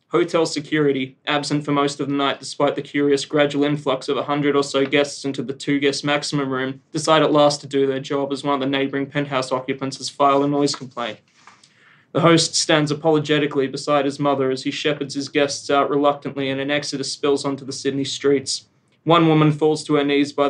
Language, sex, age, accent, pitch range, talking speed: English, male, 20-39, Australian, 140-145 Hz, 210 wpm